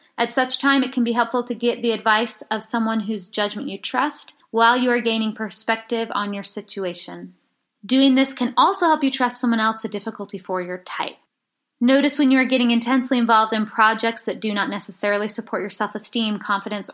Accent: American